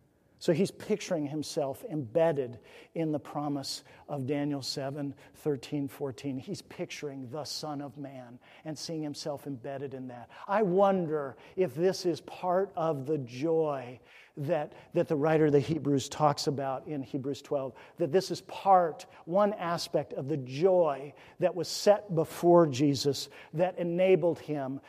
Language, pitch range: English, 140-180 Hz